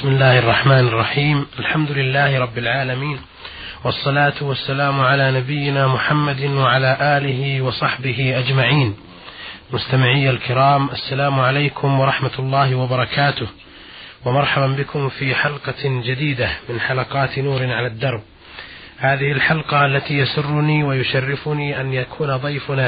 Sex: male